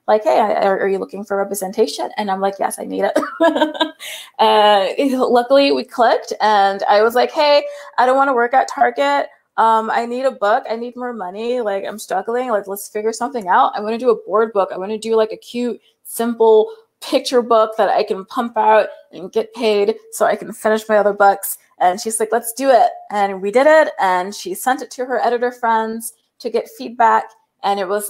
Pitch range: 195-245 Hz